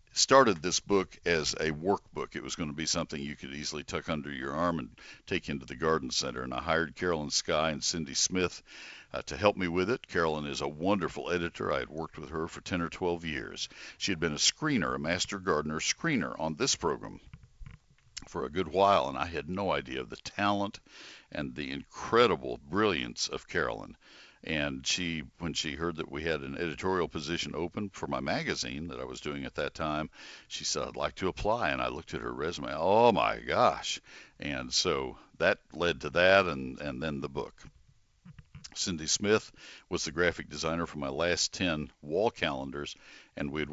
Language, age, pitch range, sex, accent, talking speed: English, 60-79, 70-90 Hz, male, American, 200 wpm